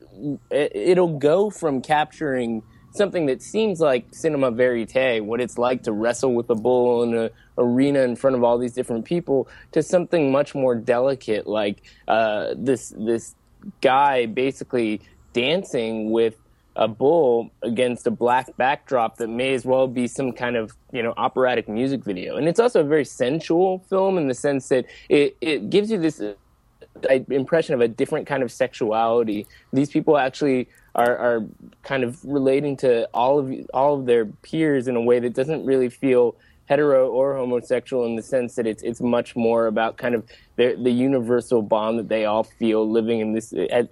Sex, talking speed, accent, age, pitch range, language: male, 180 wpm, American, 20-39, 115-140 Hz, English